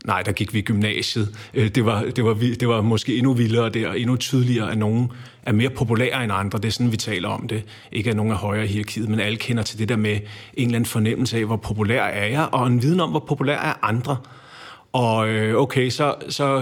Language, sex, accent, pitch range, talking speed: Danish, male, native, 105-125 Hz, 240 wpm